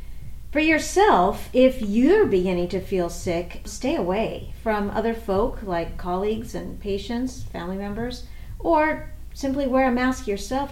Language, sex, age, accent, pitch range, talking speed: English, female, 50-69, American, 195-250 Hz, 140 wpm